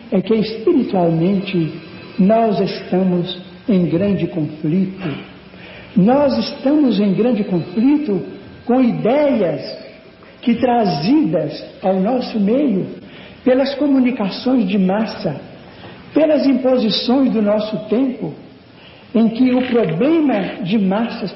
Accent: Brazilian